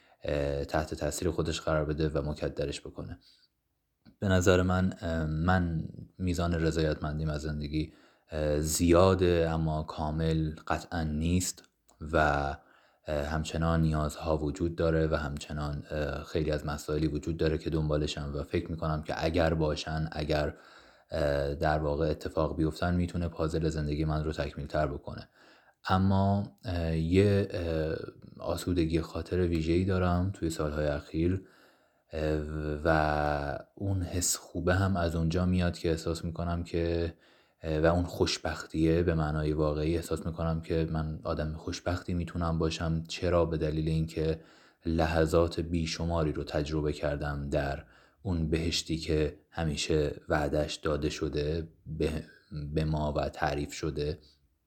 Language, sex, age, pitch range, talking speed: Persian, male, 30-49, 75-85 Hz, 125 wpm